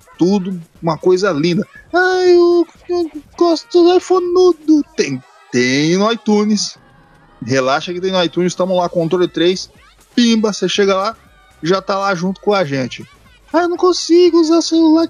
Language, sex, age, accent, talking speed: Portuguese, male, 20-39, Brazilian, 175 wpm